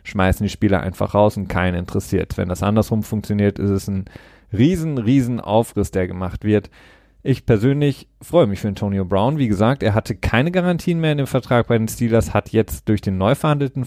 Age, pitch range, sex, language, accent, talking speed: 30-49, 100-130 Hz, male, German, German, 205 wpm